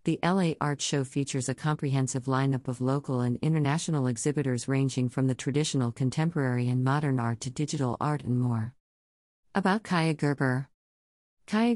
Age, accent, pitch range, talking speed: 50-69, American, 130-160 Hz, 155 wpm